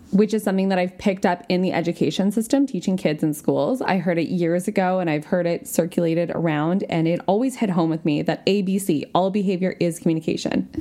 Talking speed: 215 wpm